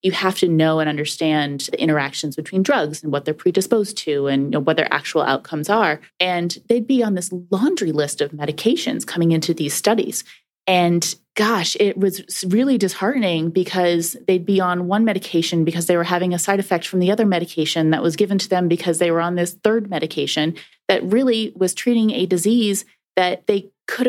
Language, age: English, 30-49